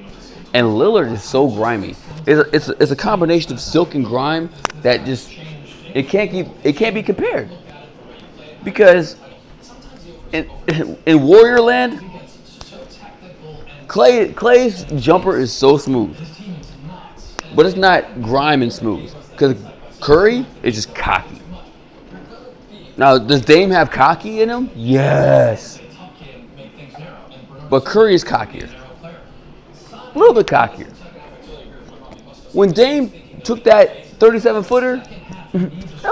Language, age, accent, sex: English, 30-49, American, male